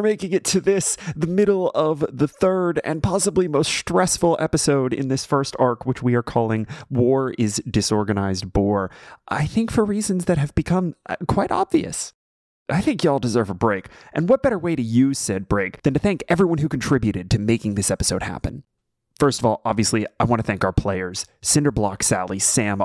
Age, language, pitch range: 30-49, English, 105-145 Hz